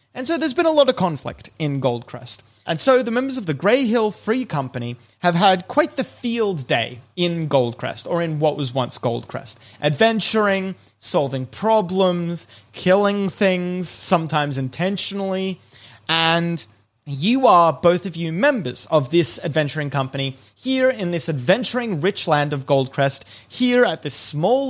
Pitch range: 135-205 Hz